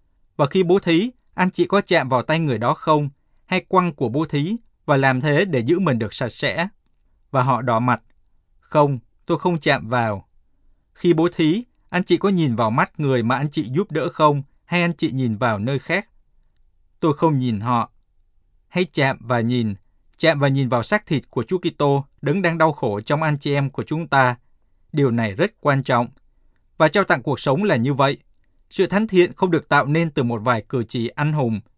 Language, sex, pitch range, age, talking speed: Vietnamese, male, 120-165 Hz, 20-39, 215 wpm